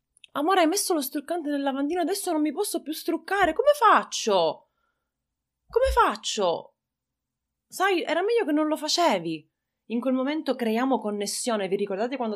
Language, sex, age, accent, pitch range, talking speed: Italian, female, 30-49, native, 190-255 Hz, 155 wpm